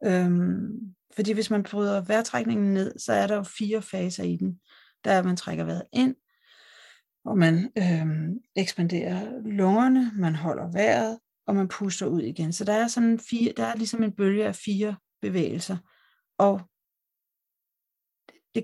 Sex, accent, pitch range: female, native, 175-215 Hz